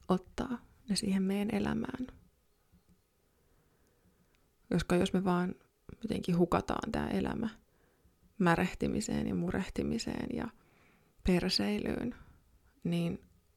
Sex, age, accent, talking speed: female, 20-39, native, 85 wpm